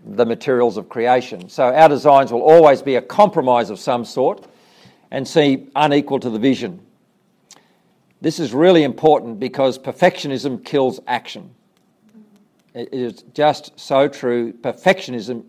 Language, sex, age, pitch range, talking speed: English, male, 50-69, 120-150 Hz, 135 wpm